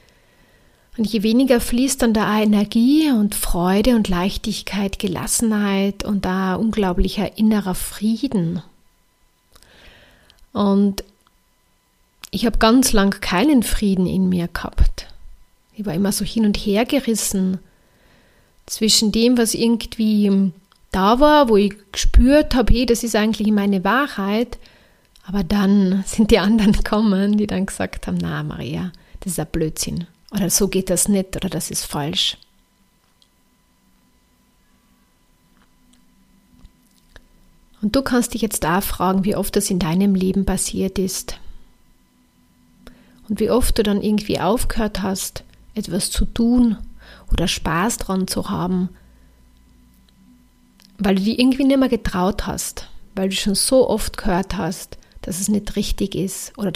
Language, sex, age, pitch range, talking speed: German, female, 30-49, 185-220 Hz, 135 wpm